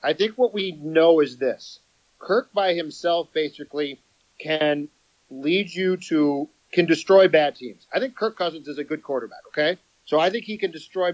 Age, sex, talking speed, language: 40-59, male, 185 wpm, English